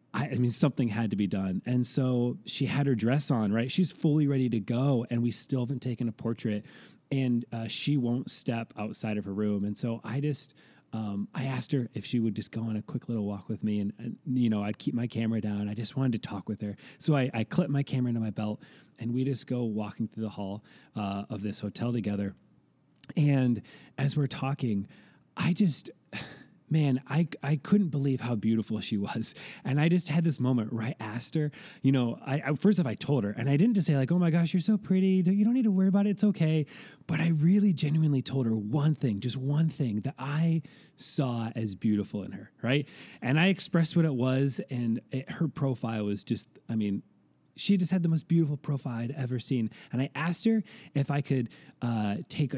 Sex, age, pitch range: male, 30-49, 110-150 Hz